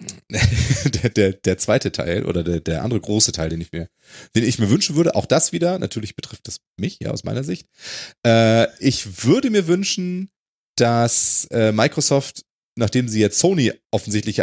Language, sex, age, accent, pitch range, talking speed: German, male, 30-49, German, 105-140 Hz, 180 wpm